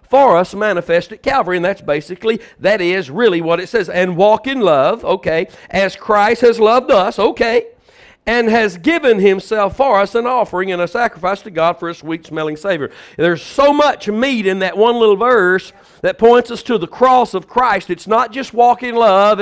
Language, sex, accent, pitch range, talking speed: English, male, American, 185-245 Hz, 200 wpm